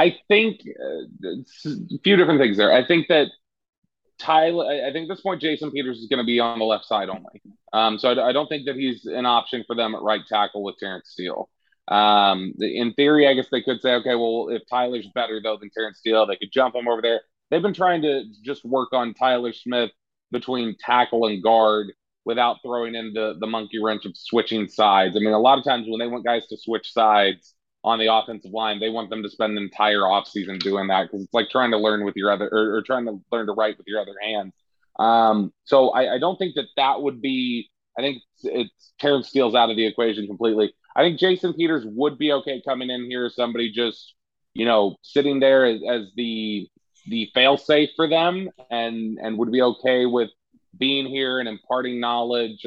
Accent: American